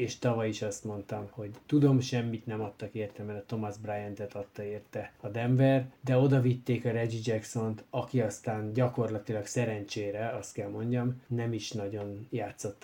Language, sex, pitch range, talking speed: Hungarian, male, 110-125 Hz, 170 wpm